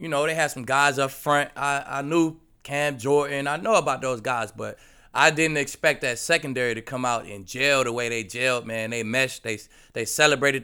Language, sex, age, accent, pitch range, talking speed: English, male, 20-39, American, 120-150 Hz, 220 wpm